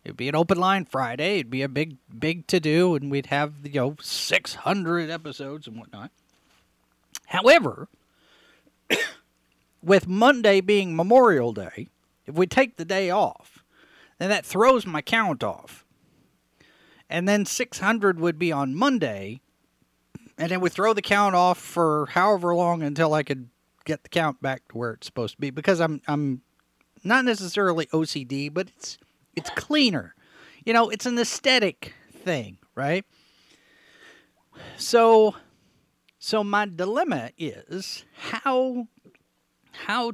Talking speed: 140 wpm